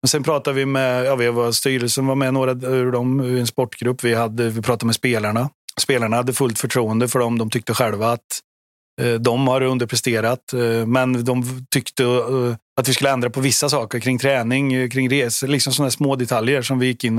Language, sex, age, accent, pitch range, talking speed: Swedish, male, 30-49, native, 115-135 Hz, 200 wpm